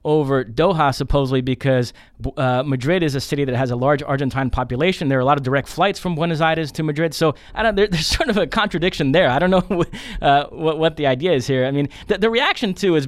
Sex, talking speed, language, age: male, 250 wpm, English, 20-39